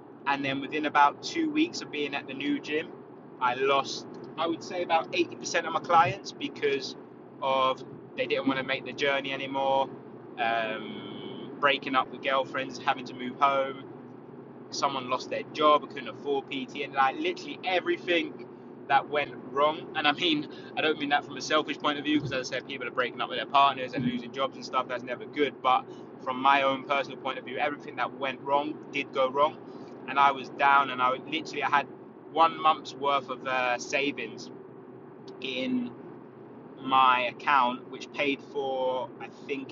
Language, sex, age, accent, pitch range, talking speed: English, male, 20-39, British, 130-145 Hz, 190 wpm